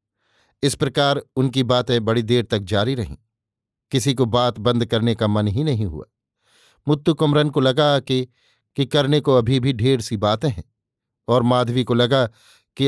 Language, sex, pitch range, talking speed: Hindi, male, 115-135 Hz, 175 wpm